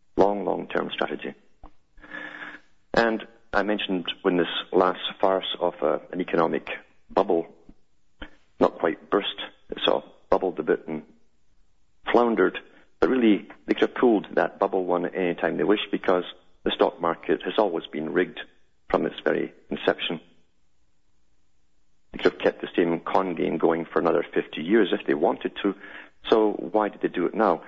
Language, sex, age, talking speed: English, male, 40-59, 160 wpm